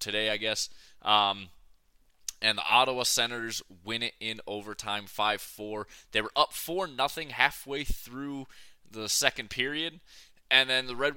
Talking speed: 145 wpm